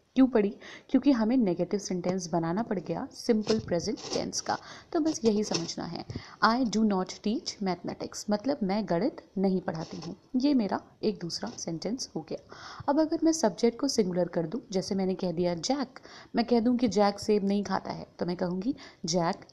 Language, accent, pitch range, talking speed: Hindi, native, 180-250 Hz, 190 wpm